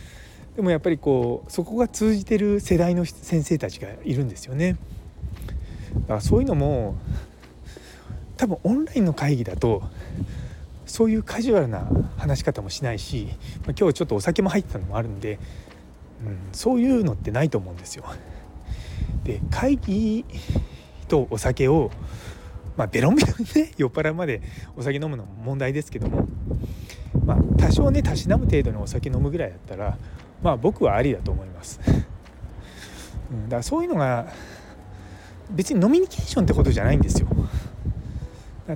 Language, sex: Japanese, male